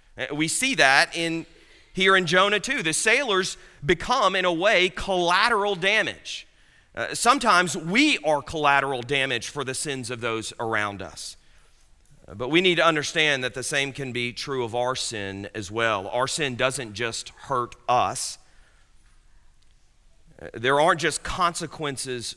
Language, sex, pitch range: English, male, 120-185 Hz